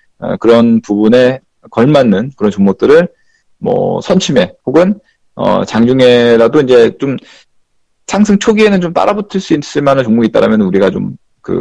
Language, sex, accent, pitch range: Korean, male, native, 115-185 Hz